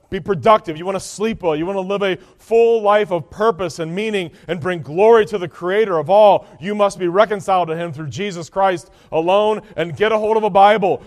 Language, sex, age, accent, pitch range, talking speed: English, male, 40-59, American, 160-200 Hz, 235 wpm